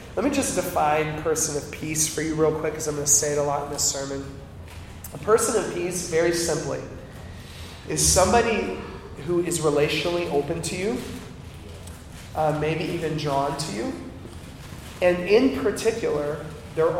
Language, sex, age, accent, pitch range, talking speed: English, male, 30-49, American, 140-165 Hz, 160 wpm